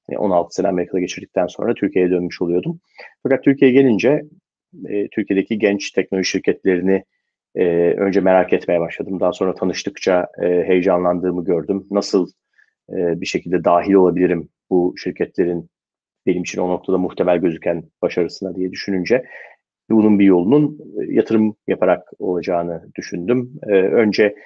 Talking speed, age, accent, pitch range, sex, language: 120 wpm, 40-59, native, 90-105 Hz, male, Turkish